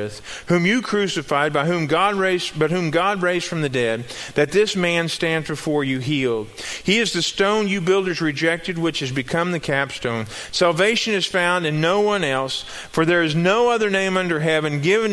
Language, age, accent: English, 40-59, American